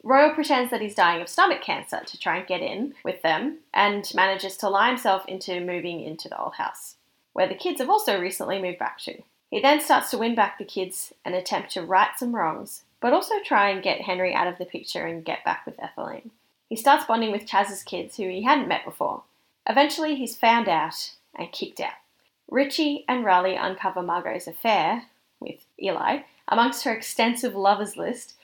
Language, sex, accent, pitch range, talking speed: English, female, Australian, 185-250 Hz, 200 wpm